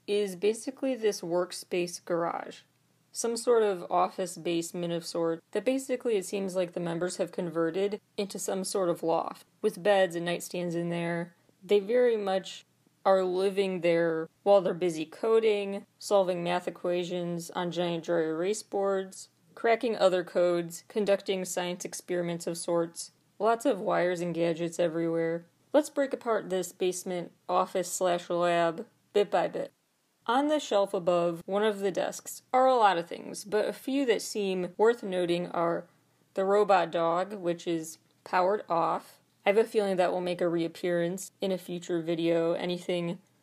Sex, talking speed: female, 160 wpm